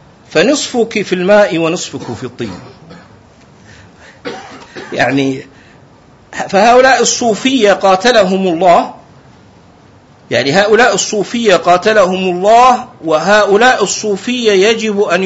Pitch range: 190-245 Hz